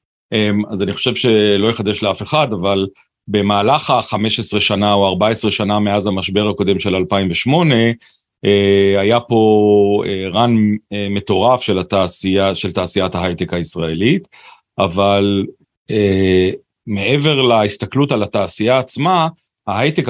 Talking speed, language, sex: 105 wpm, Hebrew, male